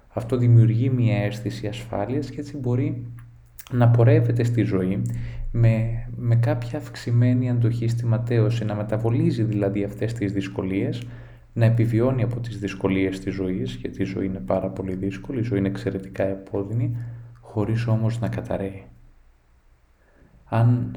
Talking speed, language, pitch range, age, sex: 140 wpm, Greek, 95-120 Hz, 20-39, male